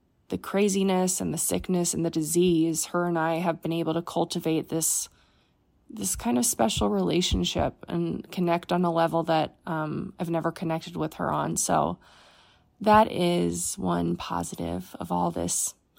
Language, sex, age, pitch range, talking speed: English, female, 20-39, 165-200 Hz, 160 wpm